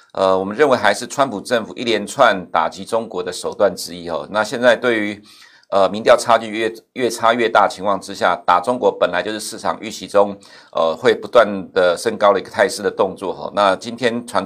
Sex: male